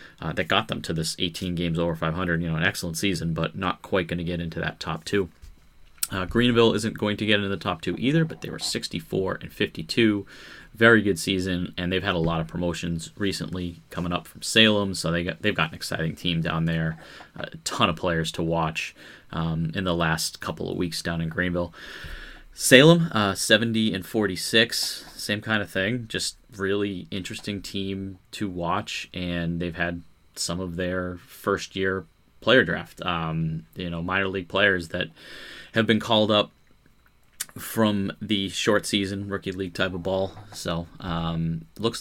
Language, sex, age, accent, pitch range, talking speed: English, male, 30-49, American, 85-100 Hz, 190 wpm